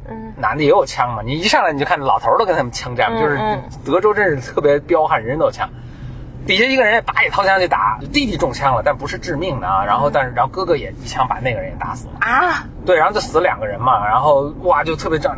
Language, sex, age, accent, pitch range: Chinese, male, 20-39, native, 130-205 Hz